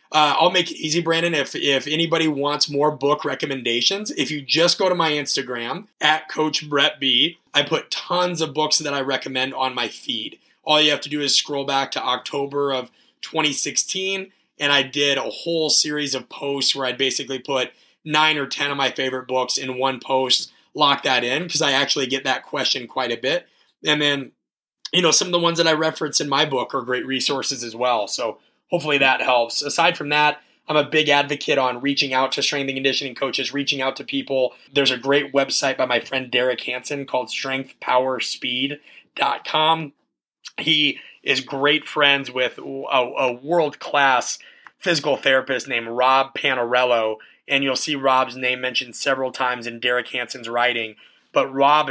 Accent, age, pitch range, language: American, 30-49, 130-150 Hz, English